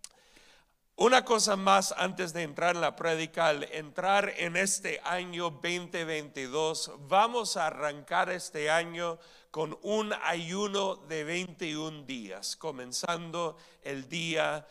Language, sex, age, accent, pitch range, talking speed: English, male, 40-59, Mexican, 150-185 Hz, 120 wpm